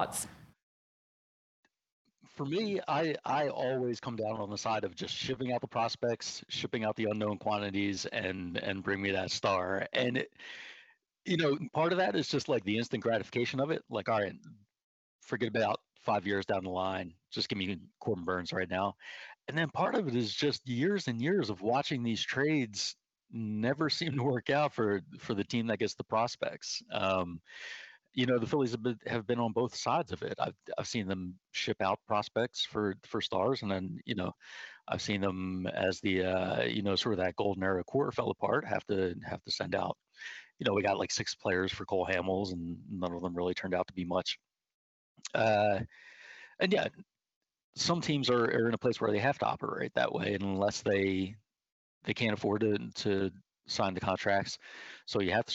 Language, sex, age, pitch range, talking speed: English, male, 50-69, 95-125 Hz, 200 wpm